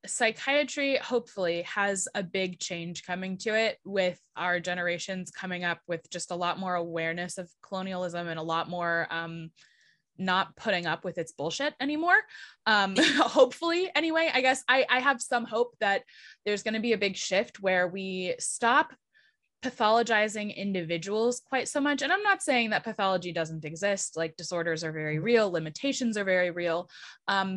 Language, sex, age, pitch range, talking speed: English, female, 20-39, 175-235 Hz, 170 wpm